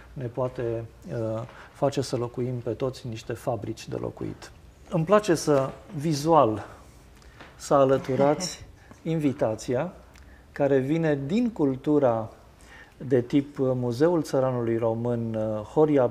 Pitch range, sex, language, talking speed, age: 120-150 Hz, male, Romanian, 105 wpm, 50-69